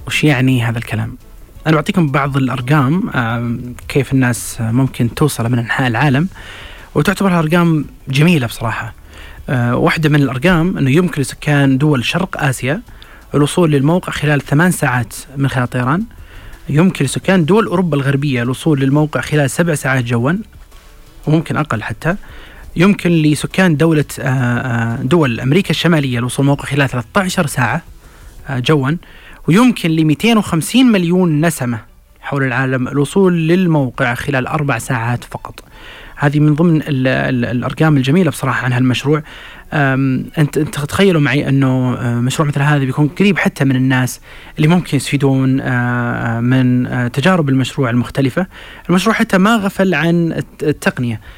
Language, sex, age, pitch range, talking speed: Arabic, male, 30-49, 125-160 Hz, 130 wpm